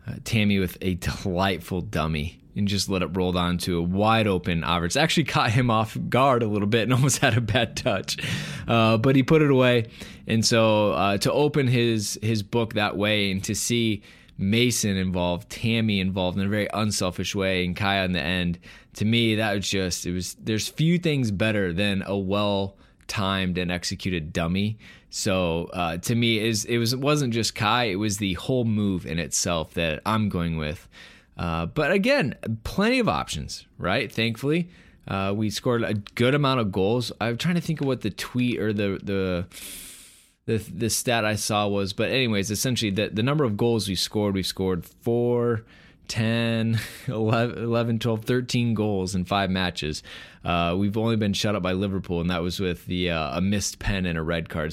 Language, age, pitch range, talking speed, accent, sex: English, 20-39, 95-120 Hz, 195 wpm, American, male